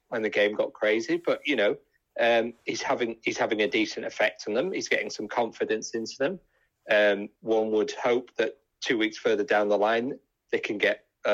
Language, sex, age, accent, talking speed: English, male, 30-49, British, 200 wpm